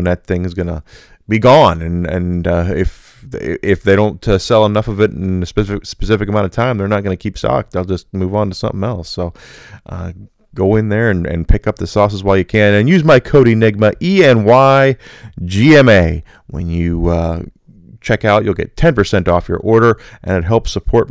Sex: male